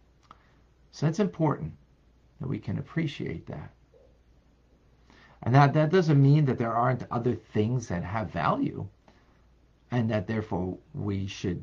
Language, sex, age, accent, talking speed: English, male, 50-69, American, 135 wpm